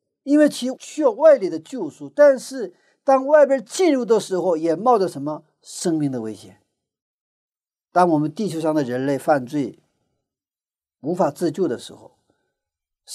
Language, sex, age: Chinese, male, 50-69